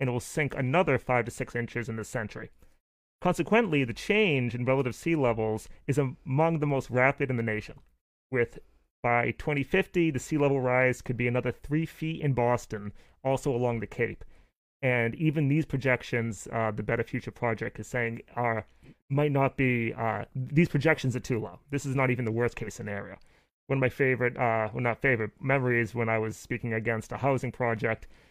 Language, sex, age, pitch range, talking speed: English, male, 30-49, 115-140 Hz, 195 wpm